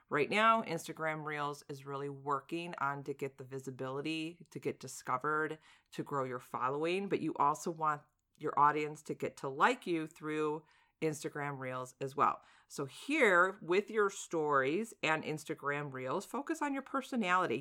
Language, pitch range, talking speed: English, 145-190 Hz, 160 wpm